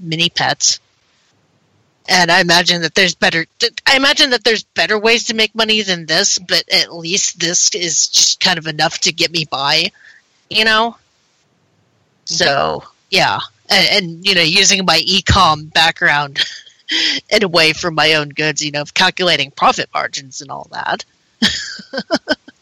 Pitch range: 155-195 Hz